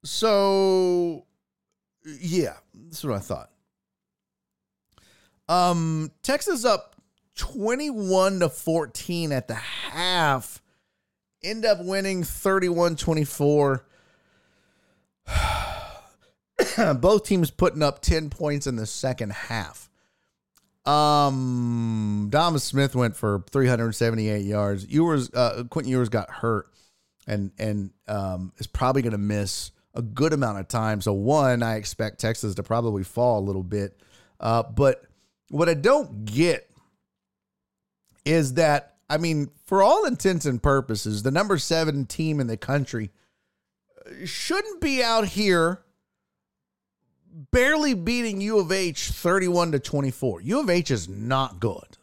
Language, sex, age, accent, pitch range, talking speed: English, male, 40-59, American, 110-175 Hz, 130 wpm